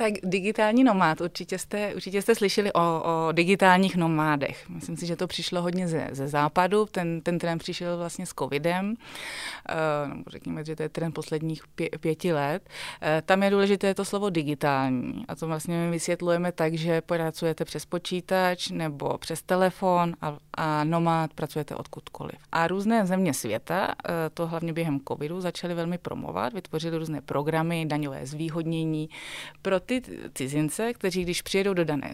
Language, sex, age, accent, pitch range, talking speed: Czech, female, 30-49, native, 155-190 Hz, 165 wpm